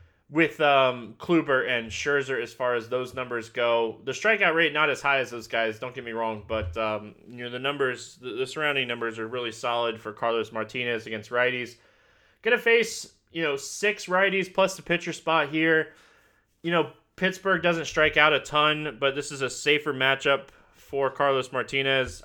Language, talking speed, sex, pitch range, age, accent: English, 185 wpm, male, 120-155 Hz, 20-39, American